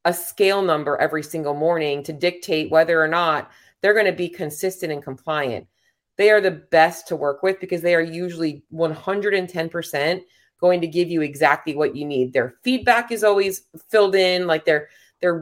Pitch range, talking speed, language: 155-185 Hz, 185 wpm, English